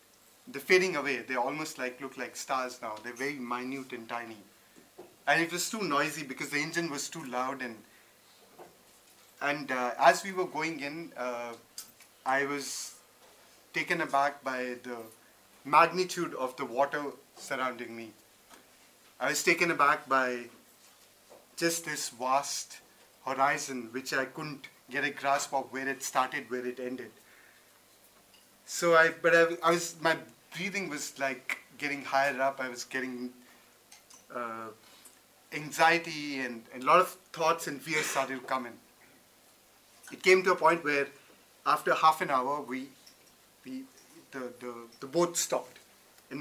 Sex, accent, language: male, Indian, English